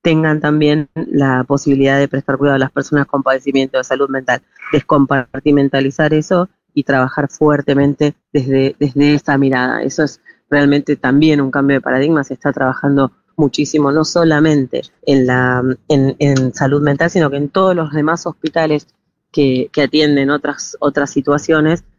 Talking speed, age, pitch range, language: 155 wpm, 20-39, 130-145 Hz, Spanish